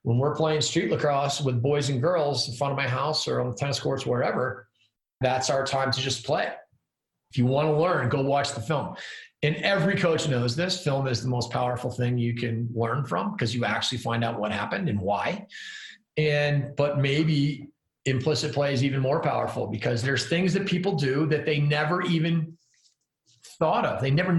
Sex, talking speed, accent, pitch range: male, 200 wpm, American, 125-155 Hz